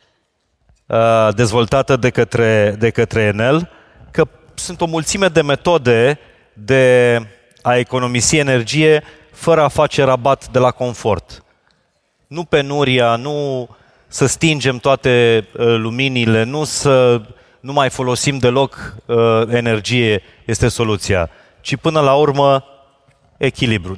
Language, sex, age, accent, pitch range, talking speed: Romanian, male, 30-49, native, 115-155 Hz, 110 wpm